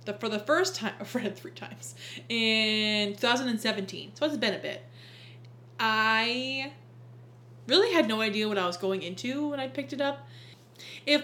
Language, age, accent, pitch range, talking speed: English, 20-39, American, 180-235 Hz, 175 wpm